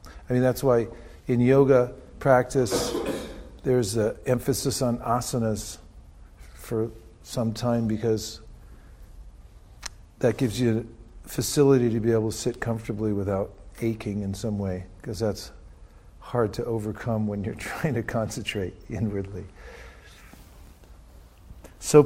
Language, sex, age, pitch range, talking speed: English, male, 50-69, 100-130 Hz, 120 wpm